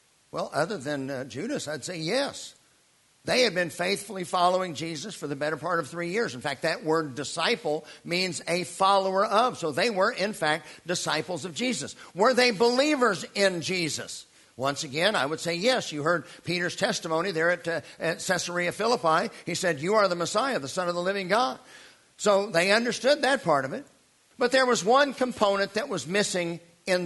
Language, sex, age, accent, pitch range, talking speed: English, male, 50-69, American, 165-200 Hz, 195 wpm